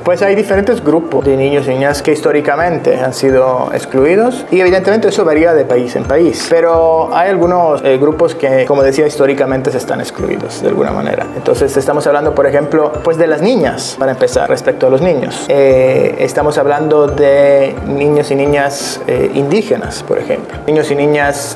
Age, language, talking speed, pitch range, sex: 30-49, Spanish, 180 wpm, 140-170 Hz, male